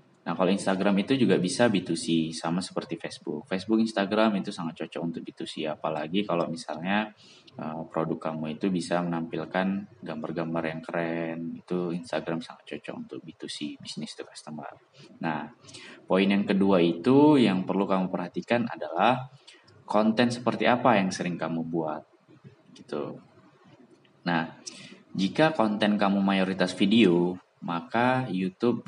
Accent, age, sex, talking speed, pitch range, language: native, 20-39, male, 130 wpm, 85-100 Hz, Indonesian